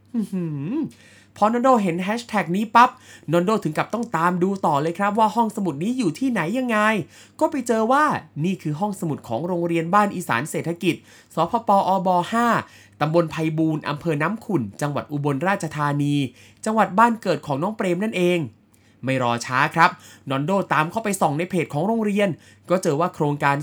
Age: 20-39